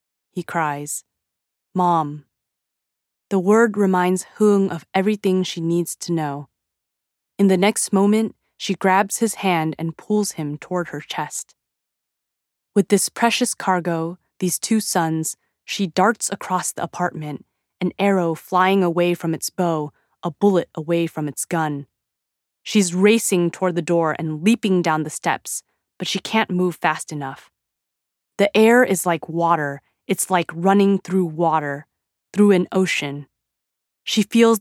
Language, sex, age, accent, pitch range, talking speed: English, female, 20-39, American, 160-195 Hz, 145 wpm